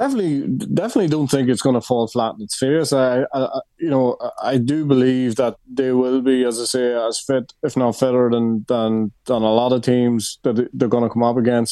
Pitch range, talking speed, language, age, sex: 115-130 Hz, 230 wpm, English, 20-39, male